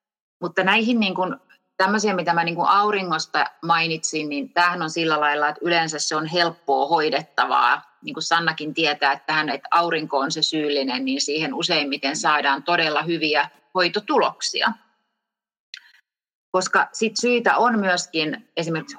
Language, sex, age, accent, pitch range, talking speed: Finnish, female, 30-49, native, 160-190 Hz, 140 wpm